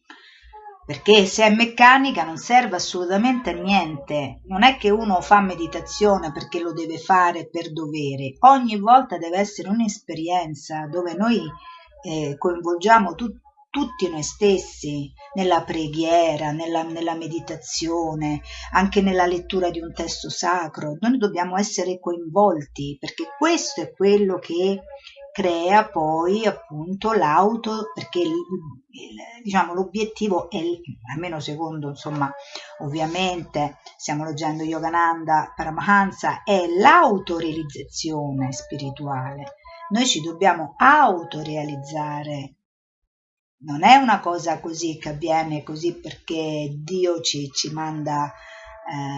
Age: 50-69